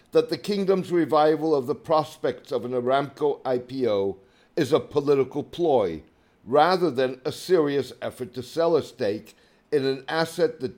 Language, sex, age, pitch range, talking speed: English, male, 60-79, 125-160 Hz, 155 wpm